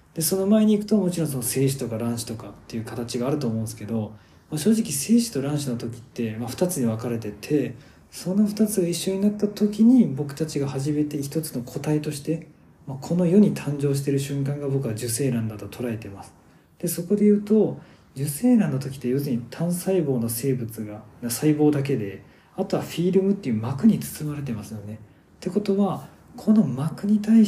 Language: Japanese